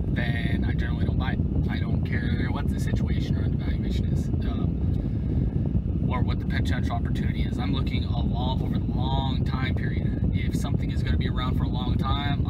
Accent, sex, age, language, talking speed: American, male, 20-39, English, 200 wpm